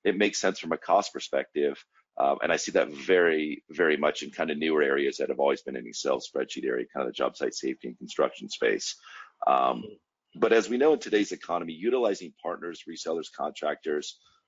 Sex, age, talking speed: male, 40-59, 205 wpm